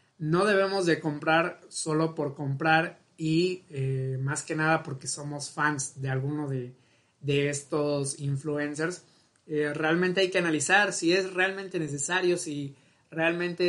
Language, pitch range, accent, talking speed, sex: Spanish, 145-165 Hz, Mexican, 140 wpm, male